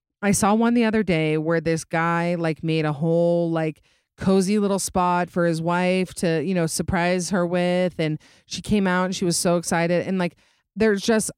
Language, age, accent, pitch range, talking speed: English, 30-49, American, 165-195 Hz, 205 wpm